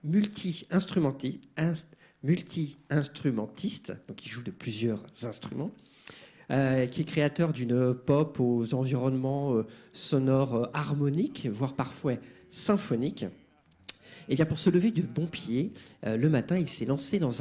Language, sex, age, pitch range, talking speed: French, male, 50-69, 130-175 Hz, 115 wpm